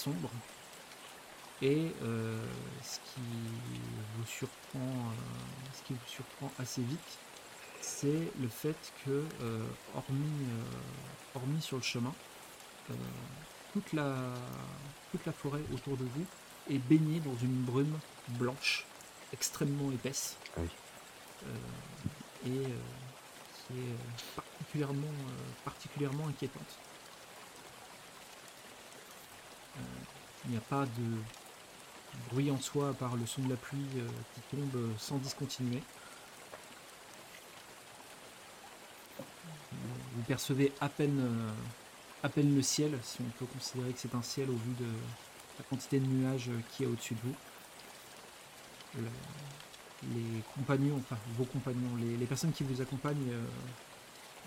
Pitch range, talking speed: 120-140 Hz, 120 wpm